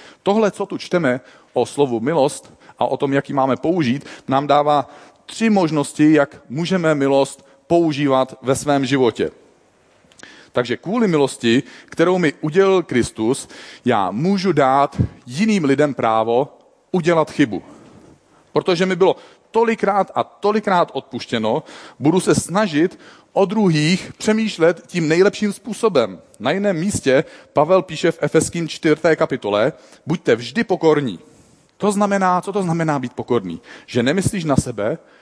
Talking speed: 135 wpm